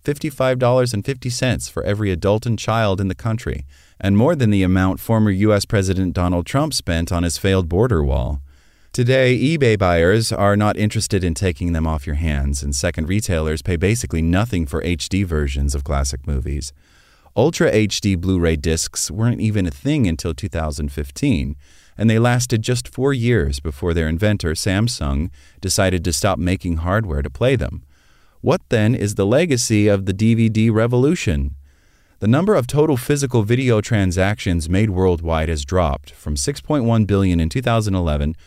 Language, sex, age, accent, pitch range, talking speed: English, male, 30-49, American, 80-115 Hz, 160 wpm